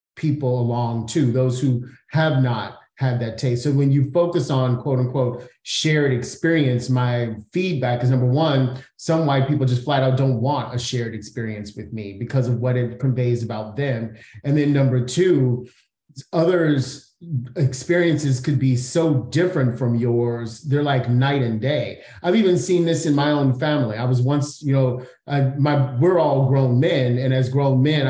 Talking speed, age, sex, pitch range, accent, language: 180 wpm, 30-49, male, 125-150 Hz, American, English